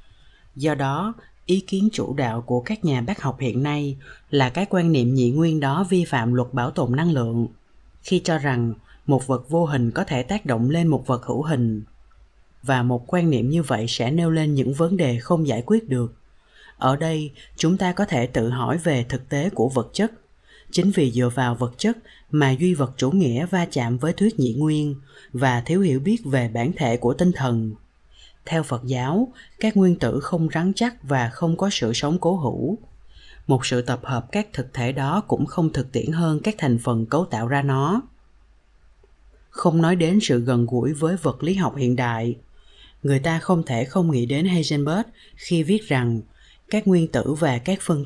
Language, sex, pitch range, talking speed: Vietnamese, female, 120-170 Hz, 205 wpm